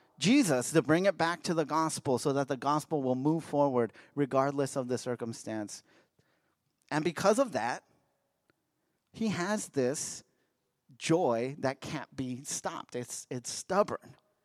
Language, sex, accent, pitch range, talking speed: English, male, American, 125-160 Hz, 140 wpm